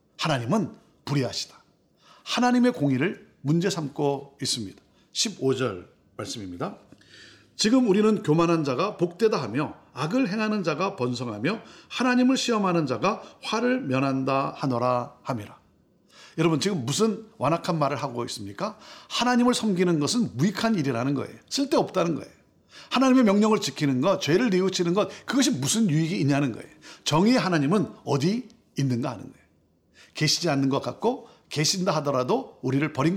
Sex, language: male, Korean